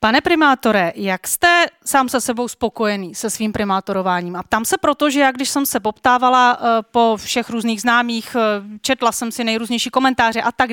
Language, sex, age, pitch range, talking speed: Czech, female, 30-49, 225-255 Hz, 180 wpm